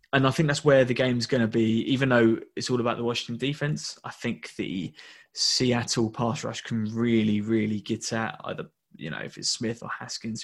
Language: English